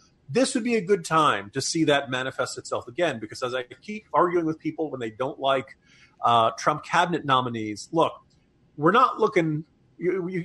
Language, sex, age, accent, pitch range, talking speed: English, male, 40-59, American, 135-200 Hz, 185 wpm